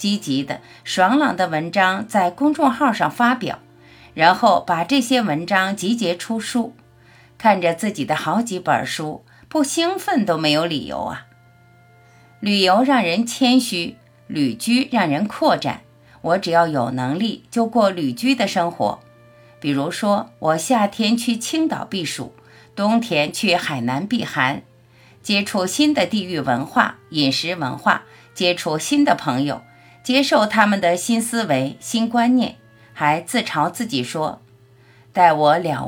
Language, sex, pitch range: Chinese, female, 140-230 Hz